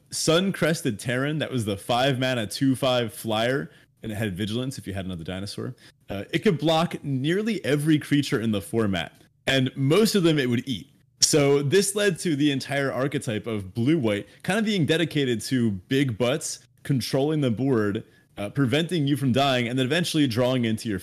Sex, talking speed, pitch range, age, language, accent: male, 195 wpm, 115-150 Hz, 30-49, English, American